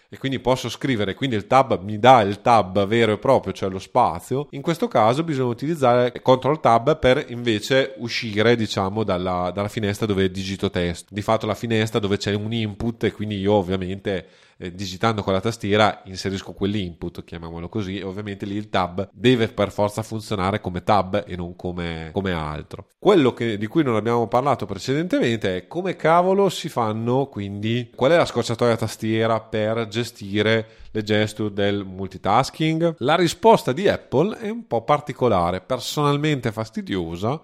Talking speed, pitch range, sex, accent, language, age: 170 wpm, 100-125 Hz, male, native, Italian, 30-49